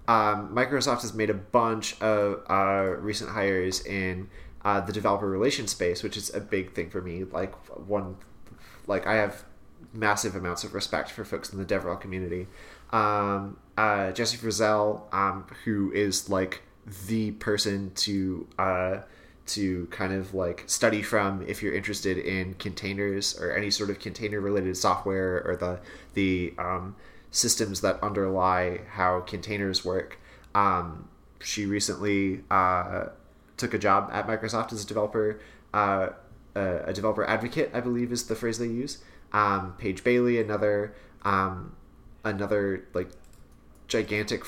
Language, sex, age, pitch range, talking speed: English, male, 30-49, 90-105 Hz, 150 wpm